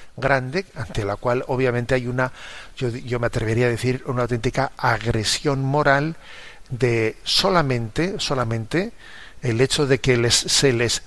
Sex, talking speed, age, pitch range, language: male, 145 wpm, 50-69, 115-145 Hz, Spanish